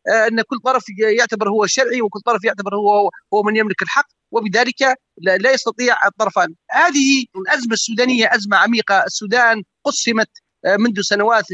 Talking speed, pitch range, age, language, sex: 145 wpm, 200-240 Hz, 30-49, Arabic, male